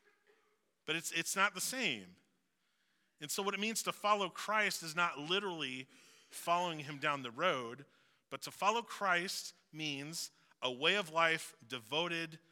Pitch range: 135-185 Hz